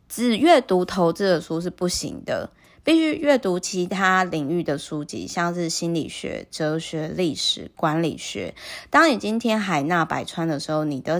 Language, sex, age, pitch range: Chinese, female, 20-39, 160-210 Hz